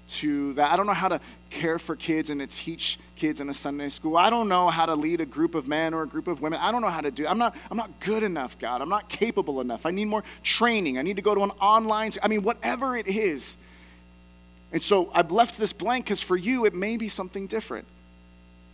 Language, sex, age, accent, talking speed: English, male, 30-49, American, 265 wpm